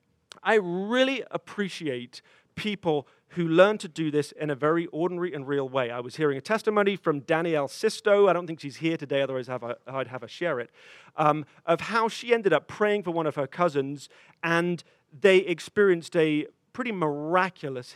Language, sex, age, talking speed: English, male, 40-59, 180 wpm